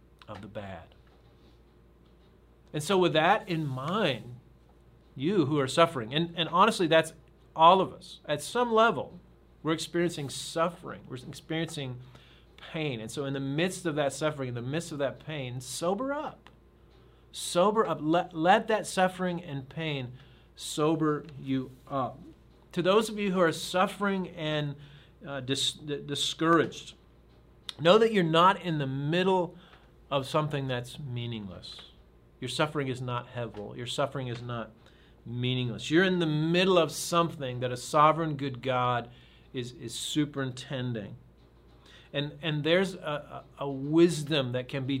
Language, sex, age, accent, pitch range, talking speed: English, male, 40-59, American, 130-170 Hz, 150 wpm